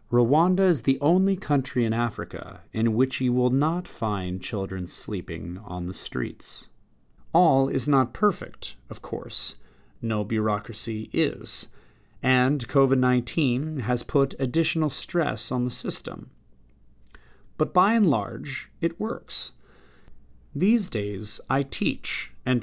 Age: 30-49